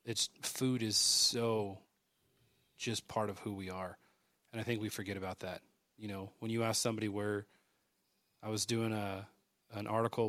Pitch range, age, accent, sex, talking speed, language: 105-125 Hz, 30-49, American, male, 175 wpm, English